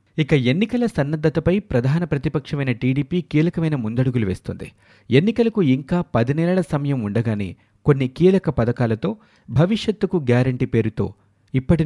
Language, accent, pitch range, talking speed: Telugu, native, 115-170 Hz, 110 wpm